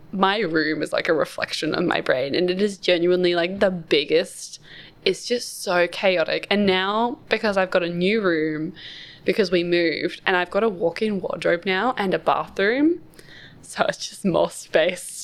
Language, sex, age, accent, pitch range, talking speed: English, female, 10-29, Australian, 175-230 Hz, 185 wpm